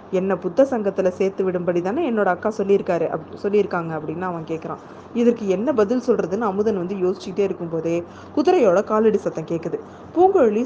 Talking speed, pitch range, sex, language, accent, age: 150 wpm, 175-220 Hz, female, Tamil, native, 20-39